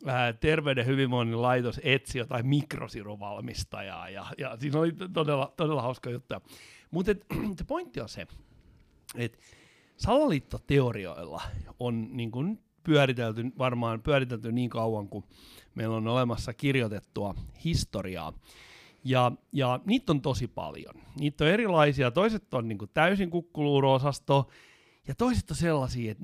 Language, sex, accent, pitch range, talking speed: Finnish, male, native, 110-155 Hz, 120 wpm